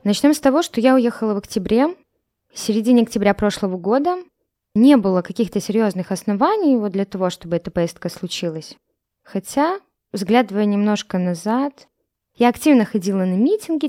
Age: 20-39